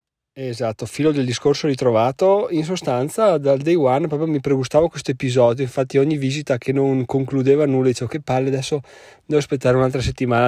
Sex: male